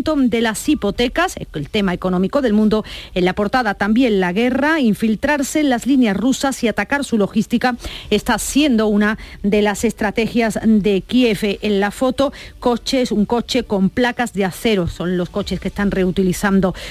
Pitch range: 200-260 Hz